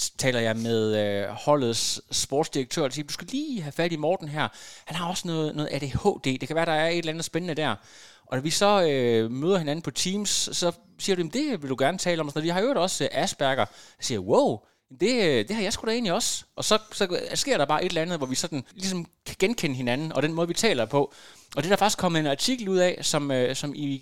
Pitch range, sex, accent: 130-175 Hz, male, native